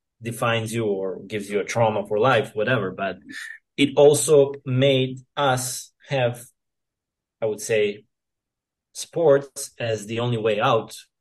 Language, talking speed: English, 135 wpm